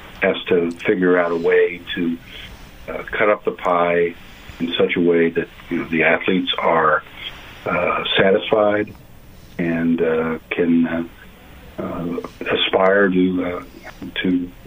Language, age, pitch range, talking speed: English, 50-69, 85-100 Hz, 135 wpm